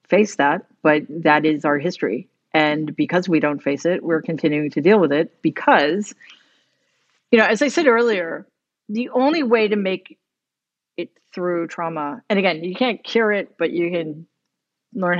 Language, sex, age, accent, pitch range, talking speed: English, female, 50-69, American, 170-230 Hz, 175 wpm